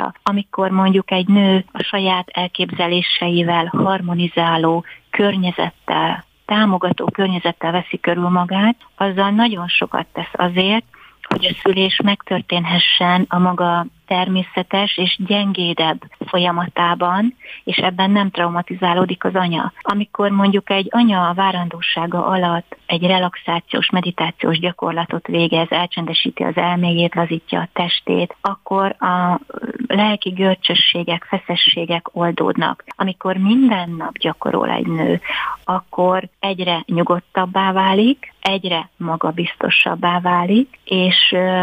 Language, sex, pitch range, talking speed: Hungarian, female, 175-195 Hz, 105 wpm